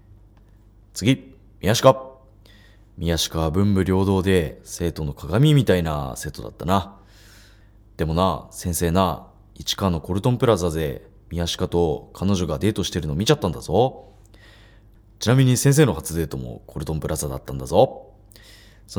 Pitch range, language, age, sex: 90-105 Hz, Japanese, 20-39, male